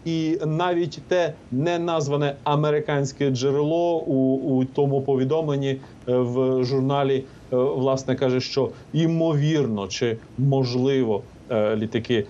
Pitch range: 130-155 Hz